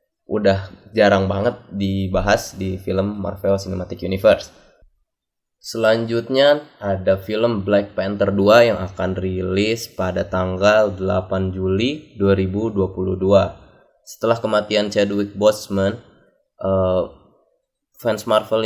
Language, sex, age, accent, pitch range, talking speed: Indonesian, male, 20-39, native, 95-110 Hz, 95 wpm